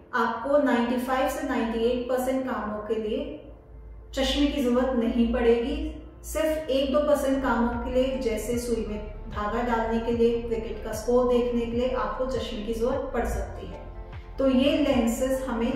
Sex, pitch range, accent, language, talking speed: female, 235-270 Hz, Indian, English, 155 wpm